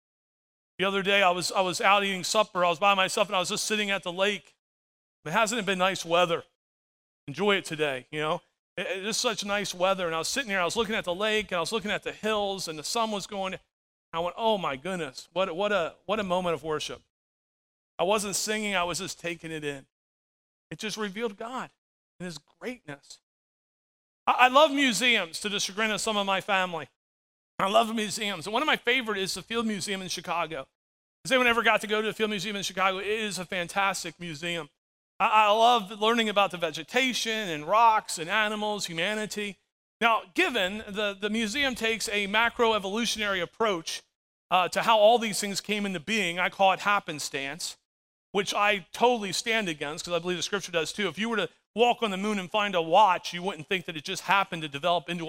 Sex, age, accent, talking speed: male, 40-59, American, 215 wpm